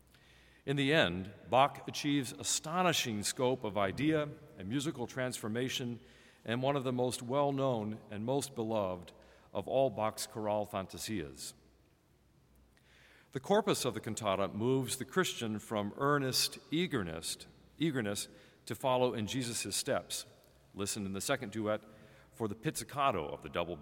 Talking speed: 135 wpm